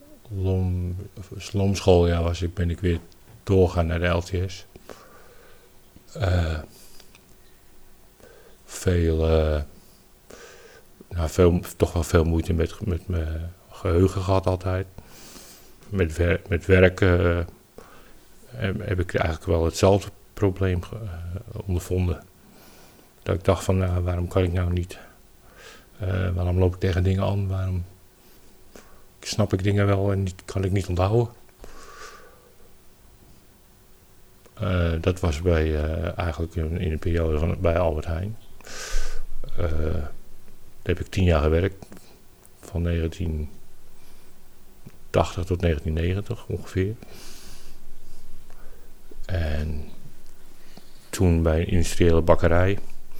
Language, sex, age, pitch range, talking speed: Dutch, male, 50-69, 85-95 Hz, 110 wpm